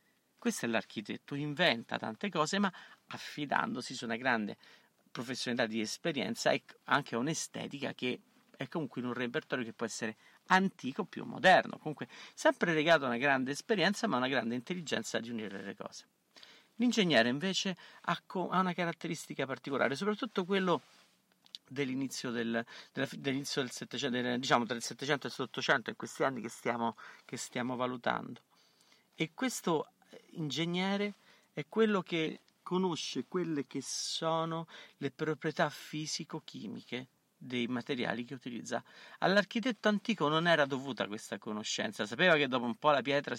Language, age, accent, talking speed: Italian, 50-69, native, 140 wpm